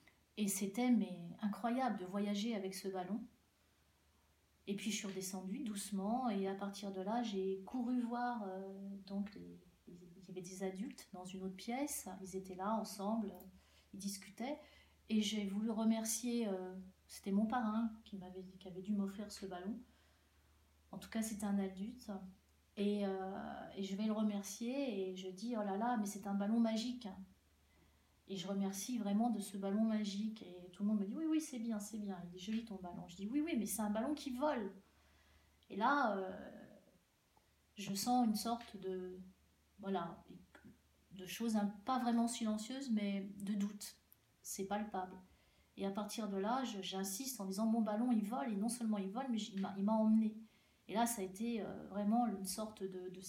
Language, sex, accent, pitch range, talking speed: French, female, French, 190-225 Hz, 195 wpm